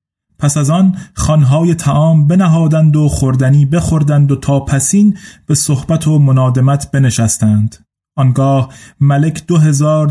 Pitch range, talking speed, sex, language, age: 135-160 Hz, 125 wpm, male, Persian, 30-49